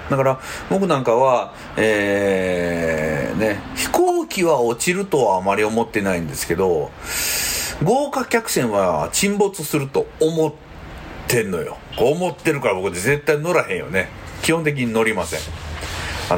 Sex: male